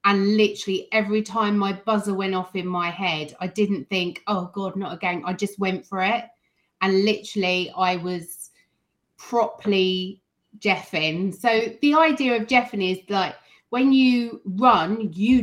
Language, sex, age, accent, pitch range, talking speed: English, female, 30-49, British, 190-225 Hz, 160 wpm